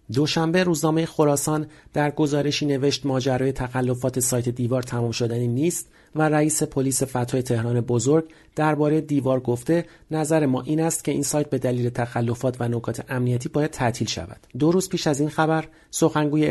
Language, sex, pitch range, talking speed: Persian, male, 125-155 Hz, 165 wpm